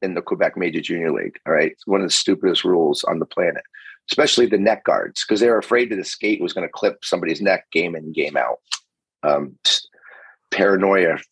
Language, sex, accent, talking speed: English, male, American, 205 wpm